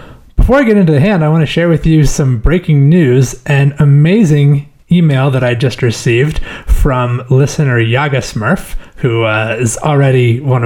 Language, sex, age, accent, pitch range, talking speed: English, male, 30-49, American, 120-155 Hz, 175 wpm